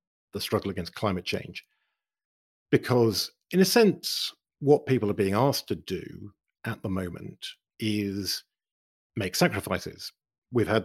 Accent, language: British, English